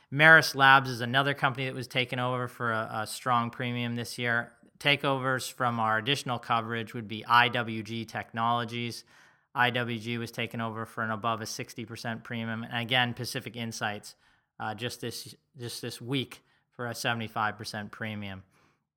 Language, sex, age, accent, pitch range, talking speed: English, male, 20-39, American, 115-130 Hz, 170 wpm